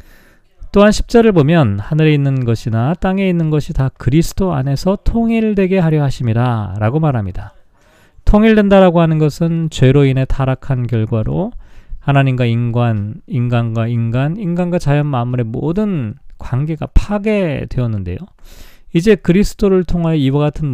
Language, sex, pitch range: Korean, male, 120-175 Hz